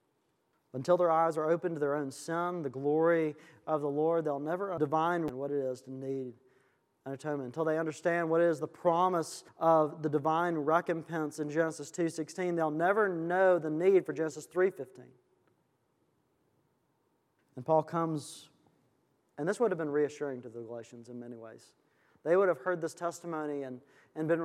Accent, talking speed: American, 170 wpm